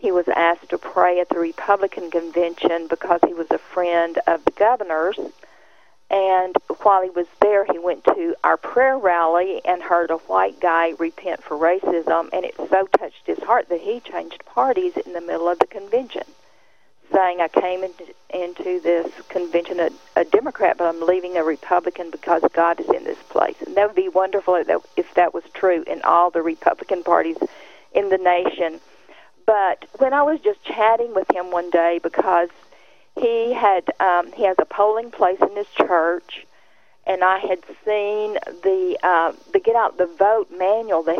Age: 50-69